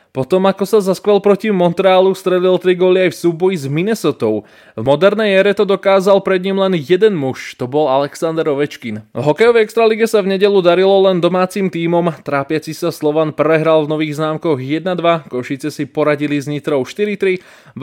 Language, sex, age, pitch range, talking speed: Slovak, male, 20-39, 150-190 Hz, 170 wpm